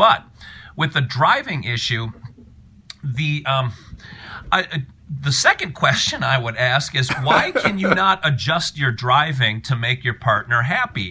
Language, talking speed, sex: English, 150 wpm, male